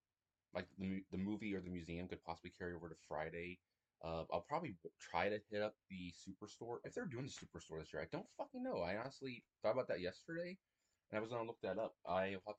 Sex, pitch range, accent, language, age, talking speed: male, 80-100 Hz, American, English, 20-39, 235 wpm